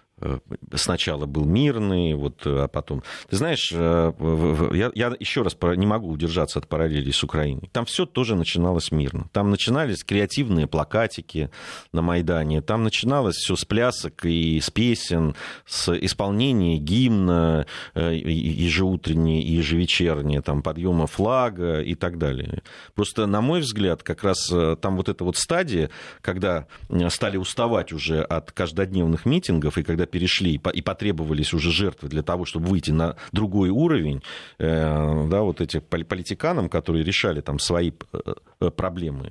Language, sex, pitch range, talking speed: Russian, male, 80-100 Hz, 140 wpm